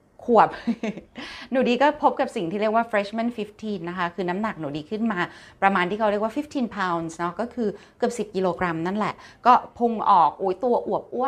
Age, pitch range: 20-39, 180-235 Hz